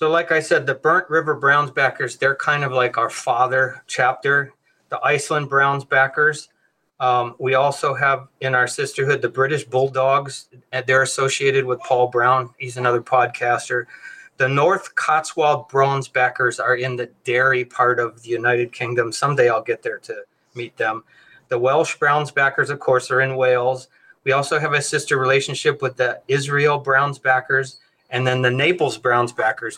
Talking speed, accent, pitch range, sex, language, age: 170 wpm, American, 125-140 Hz, male, English, 30-49